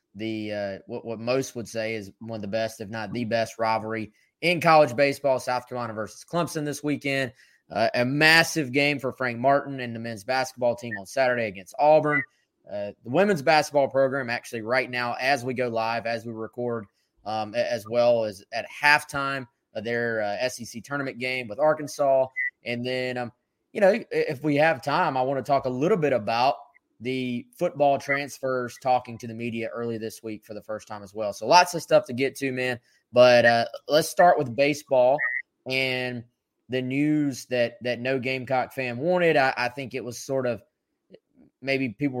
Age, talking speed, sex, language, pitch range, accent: 20-39, 195 wpm, male, English, 115-140 Hz, American